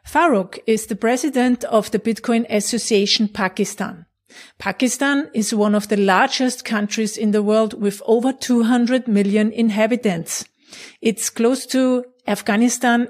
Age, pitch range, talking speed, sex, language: 40-59, 205-240 Hz, 130 wpm, female, English